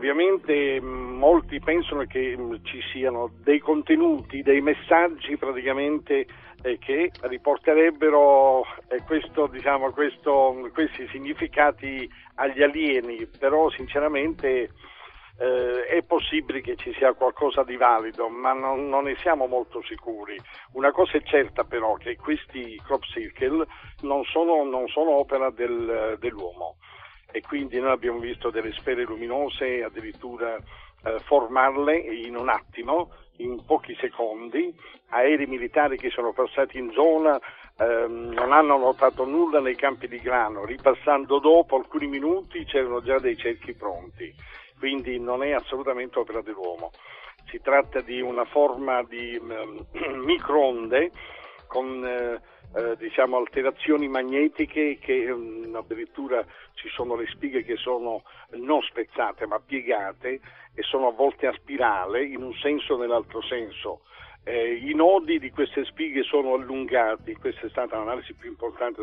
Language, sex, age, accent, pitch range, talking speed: Italian, male, 50-69, native, 125-185 Hz, 135 wpm